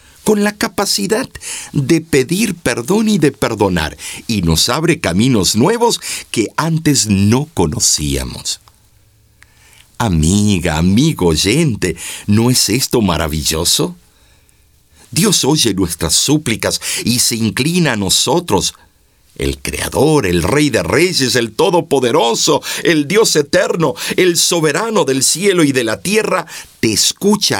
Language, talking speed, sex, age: Spanish, 120 wpm, male, 50-69